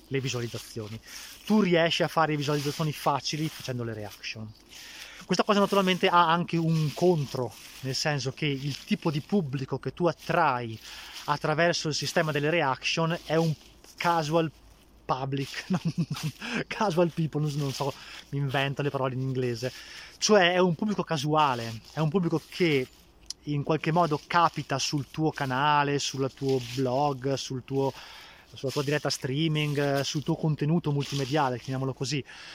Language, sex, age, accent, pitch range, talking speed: Italian, male, 20-39, native, 135-170 Hz, 145 wpm